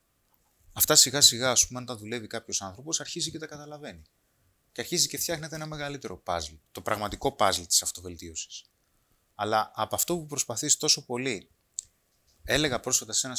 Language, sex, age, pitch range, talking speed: Greek, male, 30-49, 100-145 Hz, 160 wpm